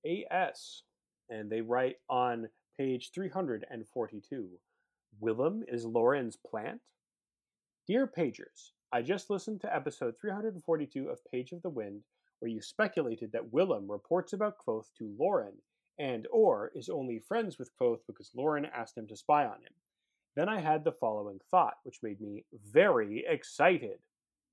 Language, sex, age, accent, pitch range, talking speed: English, male, 30-49, American, 120-190 Hz, 160 wpm